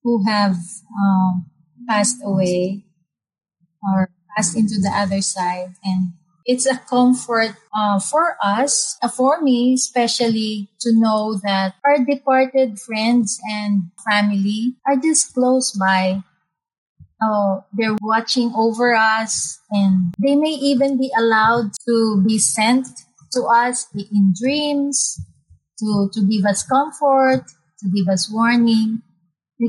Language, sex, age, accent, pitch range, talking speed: Filipino, female, 30-49, native, 195-245 Hz, 125 wpm